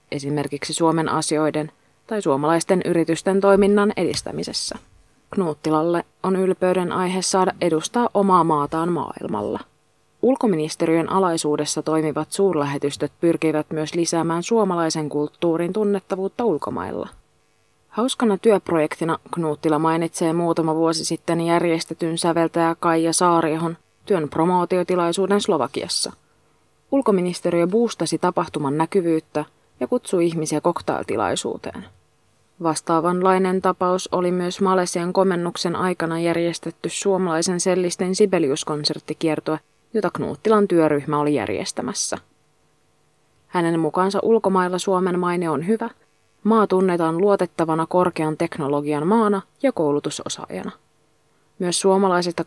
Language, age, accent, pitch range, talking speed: Finnish, 20-39, native, 160-185 Hz, 95 wpm